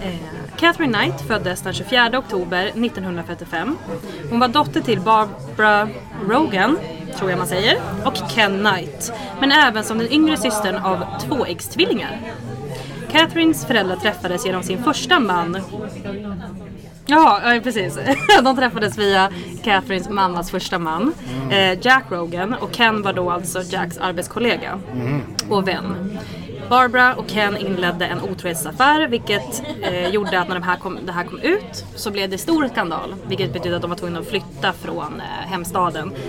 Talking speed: 150 wpm